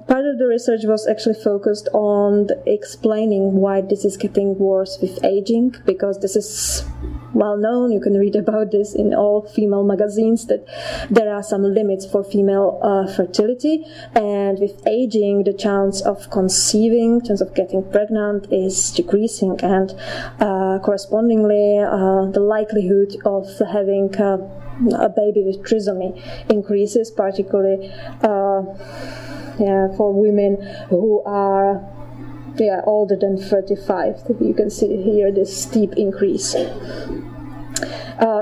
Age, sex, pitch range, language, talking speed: 20-39, female, 195-215 Hz, English, 135 wpm